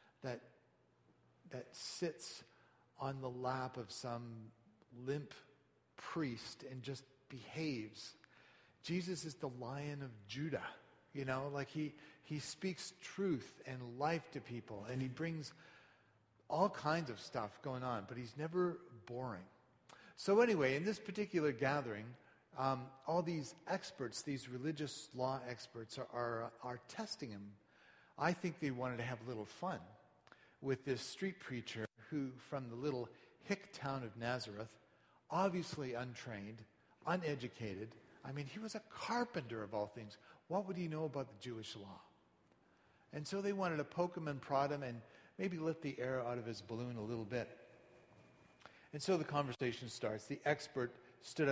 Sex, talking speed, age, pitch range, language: male, 155 wpm, 40-59, 120-155 Hz, English